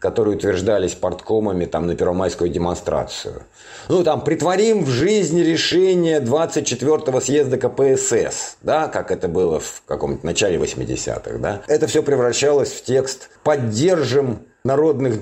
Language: Russian